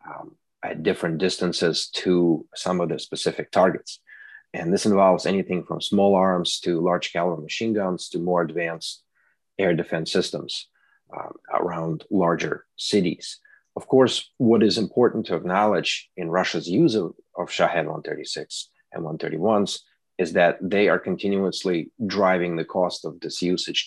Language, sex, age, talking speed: English, male, 30-49, 145 wpm